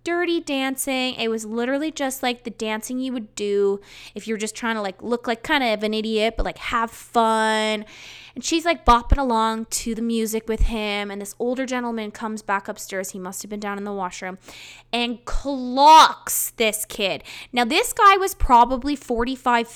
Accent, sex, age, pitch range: American, female, 20-39, 205-290 Hz